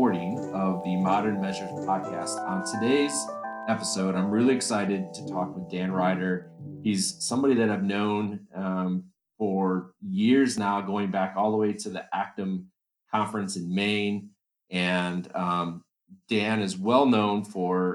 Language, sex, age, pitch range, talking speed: English, male, 30-49, 95-110 Hz, 145 wpm